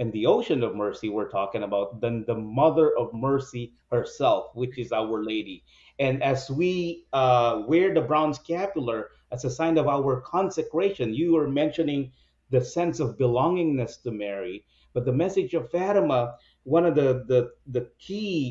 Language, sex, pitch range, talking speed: English, male, 125-155 Hz, 170 wpm